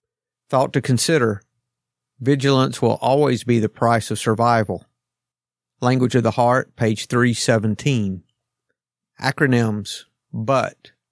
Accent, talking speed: American, 105 wpm